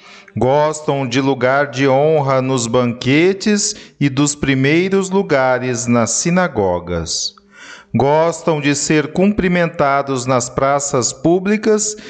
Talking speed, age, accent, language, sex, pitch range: 100 wpm, 40-59, Brazilian, Portuguese, male, 130-175 Hz